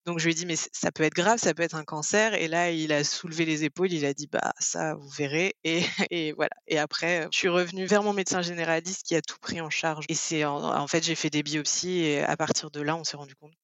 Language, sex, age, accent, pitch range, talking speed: French, female, 20-39, French, 155-180 Hz, 285 wpm